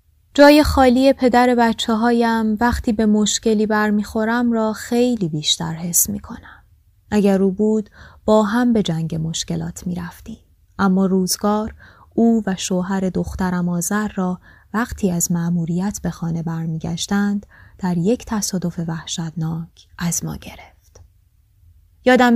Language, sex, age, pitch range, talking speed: Persian, female, 20-39, 170-210 Hz, 130 wpm